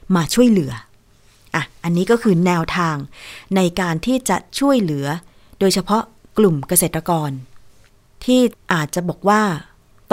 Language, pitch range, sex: Thai, 150-200 Hz, female